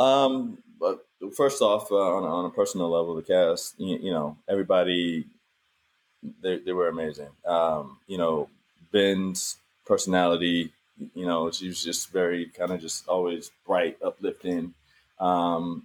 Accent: American